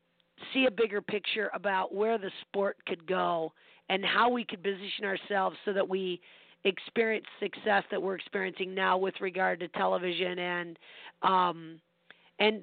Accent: American